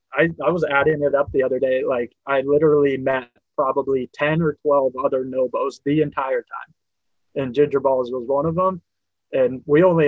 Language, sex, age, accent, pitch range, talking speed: English, male, 20-39, American, 130-150 Hz, 185 wpm